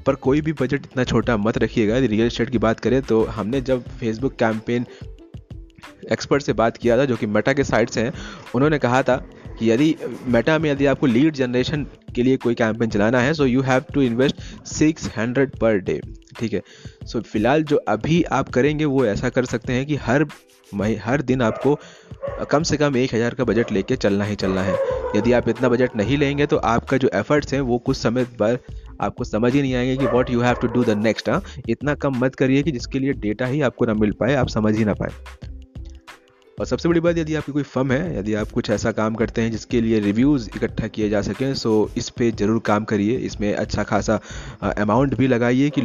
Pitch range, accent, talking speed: 110-135 Hz, native, 220 wpm